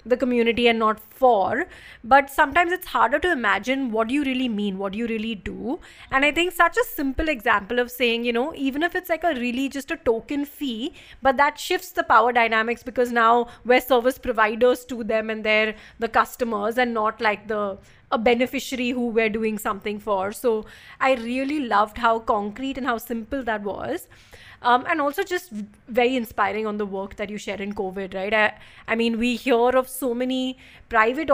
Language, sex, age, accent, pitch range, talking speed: English, female, 30-49, Indian, 220-265 Hz, 200 wpm